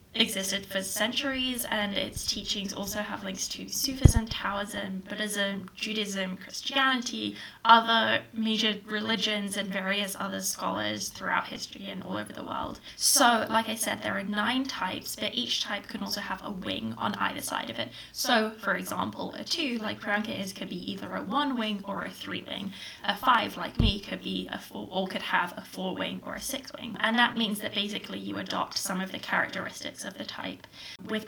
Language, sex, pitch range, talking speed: English, female, 190-225 Hz, 190 wpm